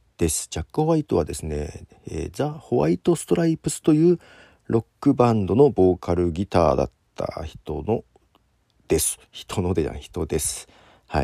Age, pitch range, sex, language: 50-69, 75-120 Hz, male, Japanese